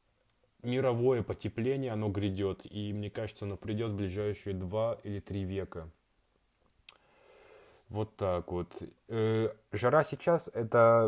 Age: 20-39